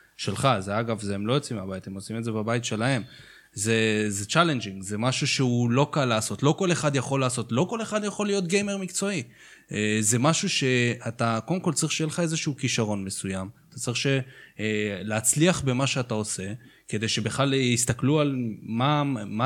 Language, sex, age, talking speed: Hebrew, male, 20-39, 180 wpm